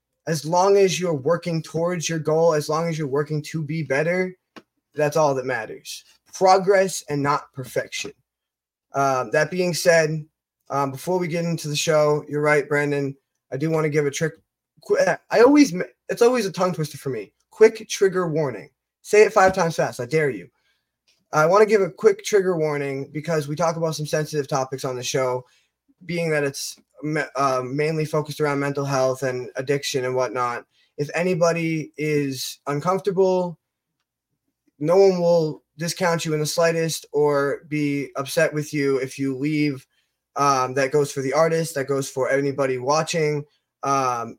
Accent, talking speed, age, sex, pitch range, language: American, 175 wpm, 20-39, male, 140-170 Hz, English